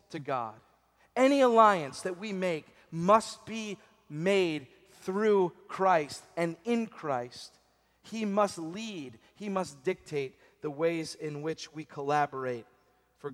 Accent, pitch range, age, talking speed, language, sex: American, 155-210 Hz, 40-59, 125 wpm, English, male